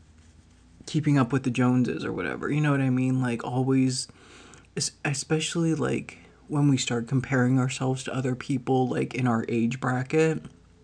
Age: 30-49